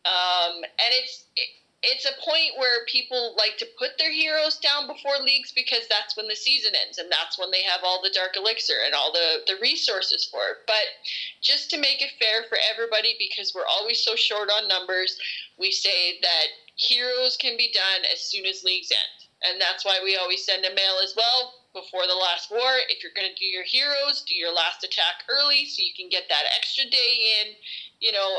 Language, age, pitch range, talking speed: English, 20-39, 200-305 Hz, 215 wpm